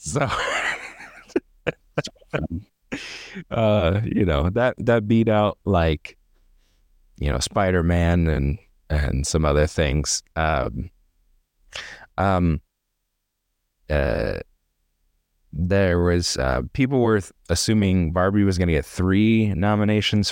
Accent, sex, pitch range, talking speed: American, male, 75-100 Hz, 100 wpm